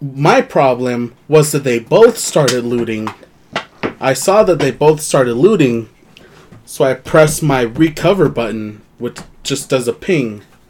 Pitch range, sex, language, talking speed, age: 125-160 Hz, male, English, 145 wpm, 20-39